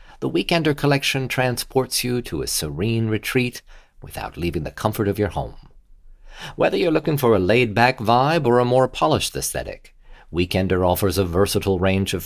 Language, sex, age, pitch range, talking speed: English, male, 40-59, 95-130 Hz, 165 wpm